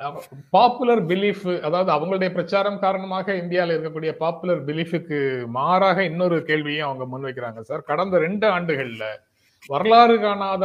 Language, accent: Tamil, native